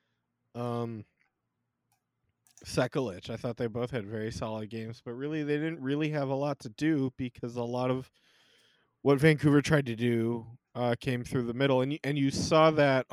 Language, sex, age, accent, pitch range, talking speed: English, male, 30-49, American, 110-140 Hz, 185 wpm